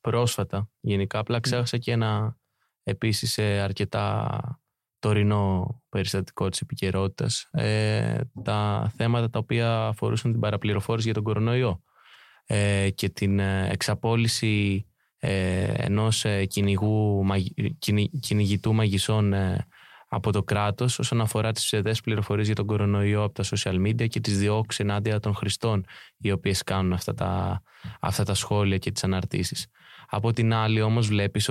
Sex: male